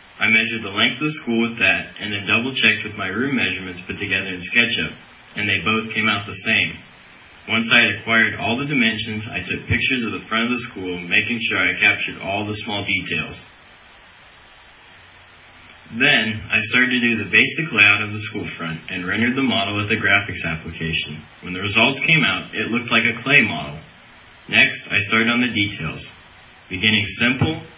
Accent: American